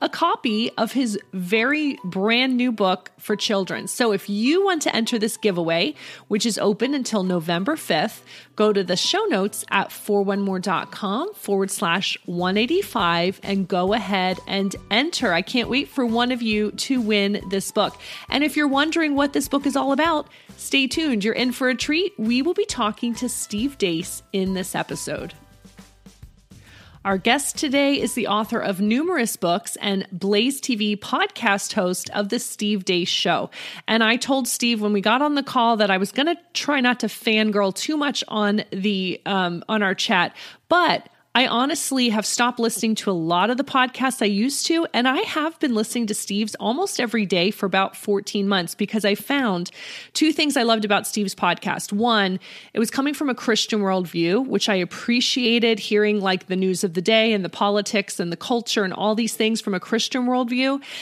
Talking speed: 190 wpm